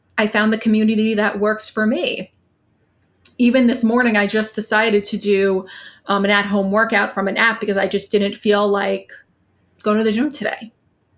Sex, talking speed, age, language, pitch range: female, 185 wpm, 20-39, English, 195-230 Hz